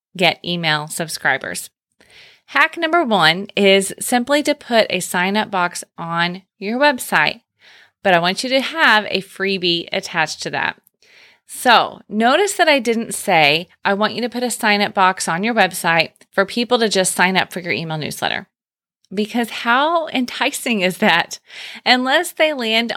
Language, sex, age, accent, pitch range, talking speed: English, female, 30-49, American, 185-245 Hz, 165 wpm